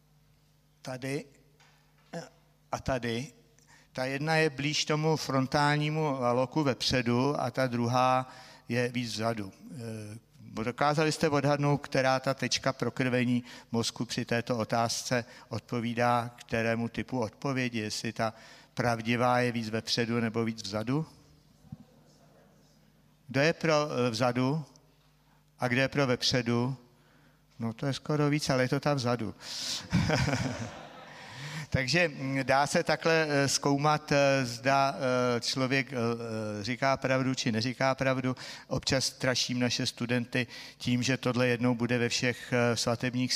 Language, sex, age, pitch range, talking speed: Czech, male, 60-79, 120-140 Hz, 115 wpm